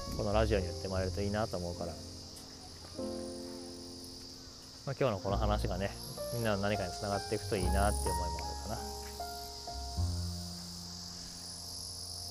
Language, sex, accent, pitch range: Japanese, male, native, 85-115 Hz